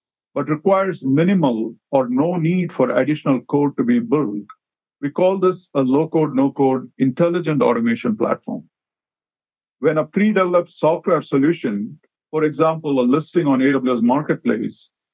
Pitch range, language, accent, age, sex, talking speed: 130-170 Hz, English, Indian, 50-69, male, 130 wpm